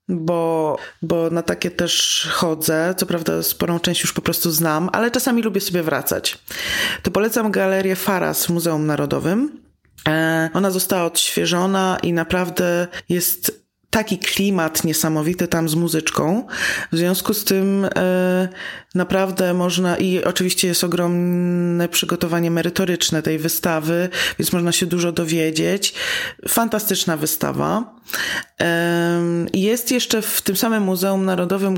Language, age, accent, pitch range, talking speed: Polish, 20-39, native, 170-195 Hz, 130 wpm